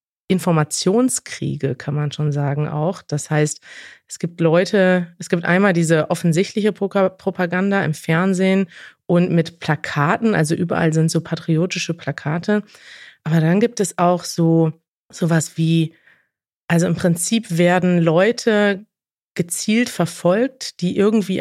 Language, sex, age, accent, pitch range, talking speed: German, female, 30-49, German, 160-180 Hz, 125 wpm